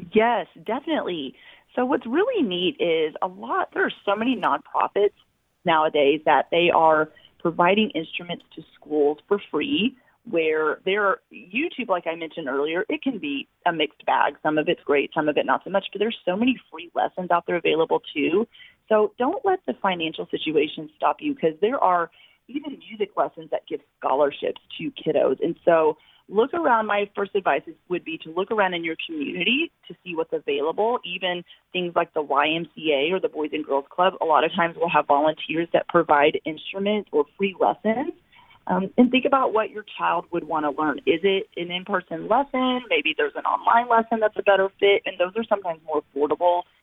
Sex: female